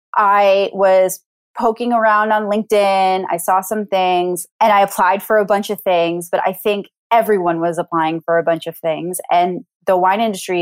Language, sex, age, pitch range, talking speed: English, female, 20-39, 175-220 Hz, 185 wpm